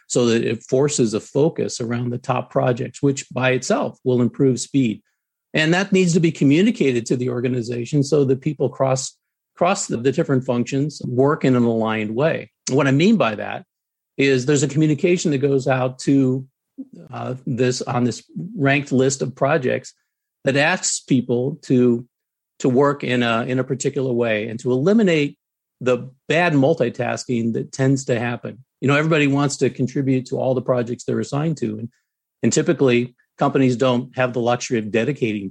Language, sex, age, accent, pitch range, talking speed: English, male, 50-69, American, 125-145 Hz, 180 wpm